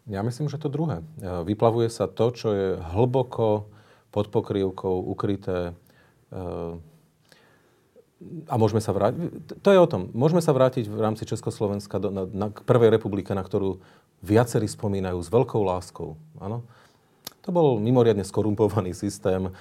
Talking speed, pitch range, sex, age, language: 135 wpm, 95-115 Hz, male, 40-59, Slovak